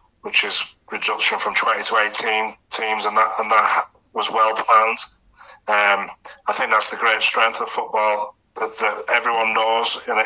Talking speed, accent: 170 wpm, British